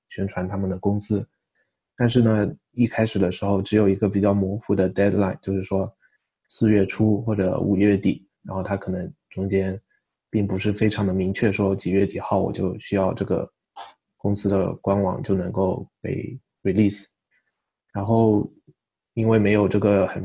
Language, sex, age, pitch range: Chinese, male, 20-39, 95-105 Hz